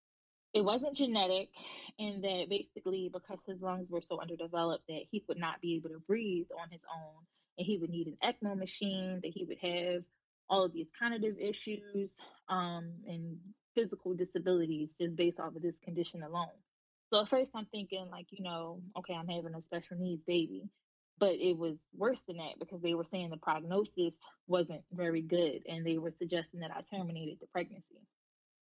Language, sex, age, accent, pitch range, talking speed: English, female, 20-39, American, 165-190 Hz, 185 wpm